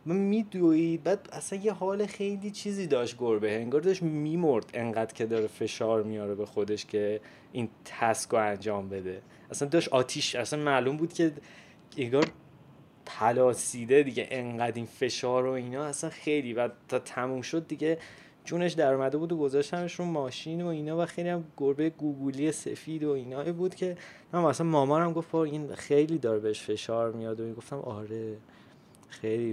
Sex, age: male, 20-39